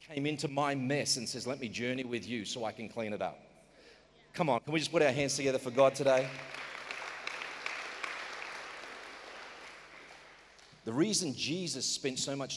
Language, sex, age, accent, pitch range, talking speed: English, male, 40-59, Australian, 115-140 Hz, 165 wpm